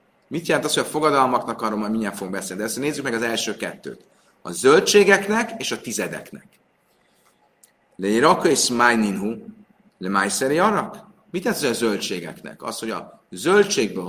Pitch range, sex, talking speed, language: 110-165 Hz, male, 155 wpm, Hungarian